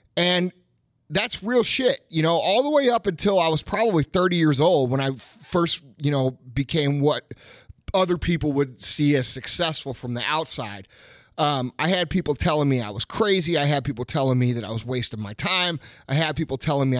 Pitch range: 135-185 Hz